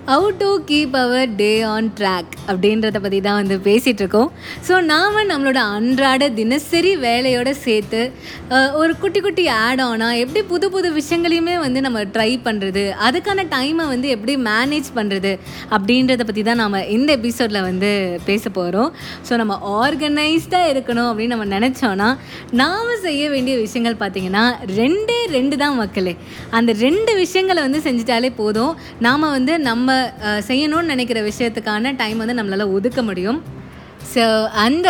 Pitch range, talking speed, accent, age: 220-295 Hz, 145 wpm, native, 20-39